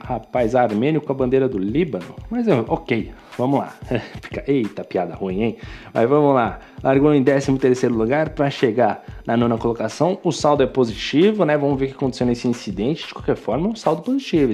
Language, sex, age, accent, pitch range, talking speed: Portuguese, male, 20-39, Brazilian, 125-170 Hz, 190 wpm